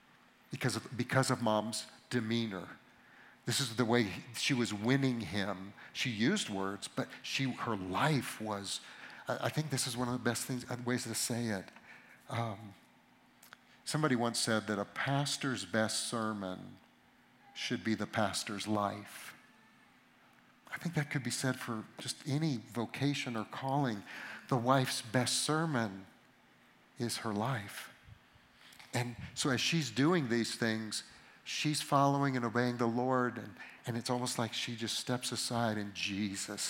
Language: English